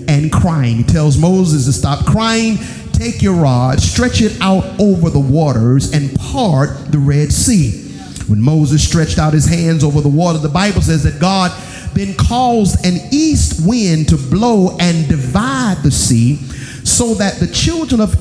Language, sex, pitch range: English, male, 150-200 Hz